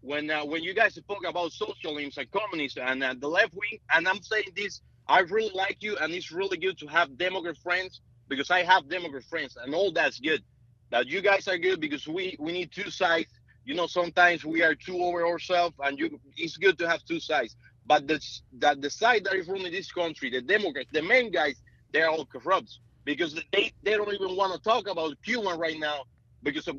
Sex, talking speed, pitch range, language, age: male, 220 wpm, 145-195 Hz, English, 30-49